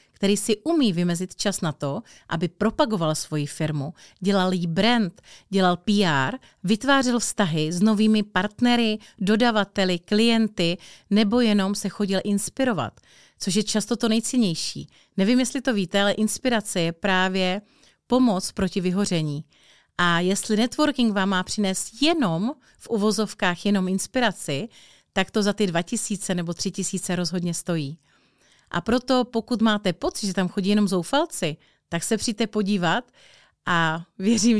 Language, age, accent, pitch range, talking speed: Czech, 40-59, native, 180-220 Hz, 140 wpm